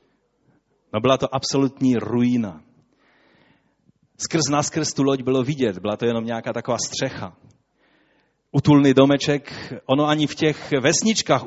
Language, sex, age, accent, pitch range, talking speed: Czech, male, 30-49, native, 115-140 Hz, 125 wpm